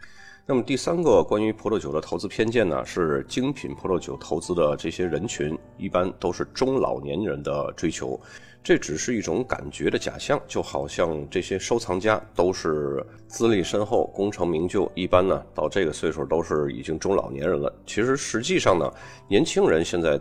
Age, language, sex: 30-49, Chinese, male